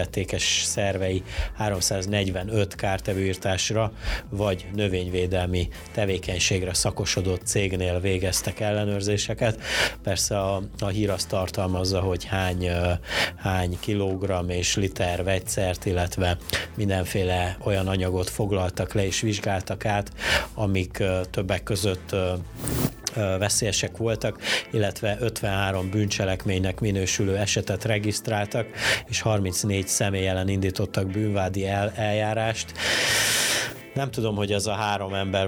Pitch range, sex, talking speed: 90-105 Hz, male, 95 wpm